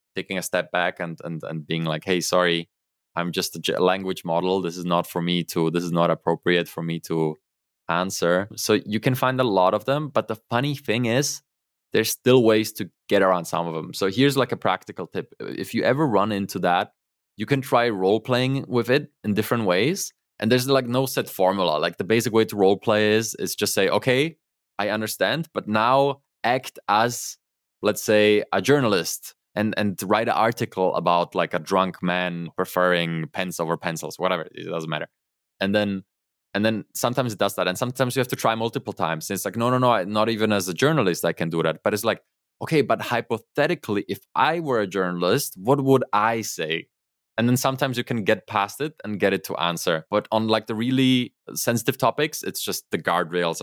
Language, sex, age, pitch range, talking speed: English, male, 20-39, 90-120 Hz, 210 wpm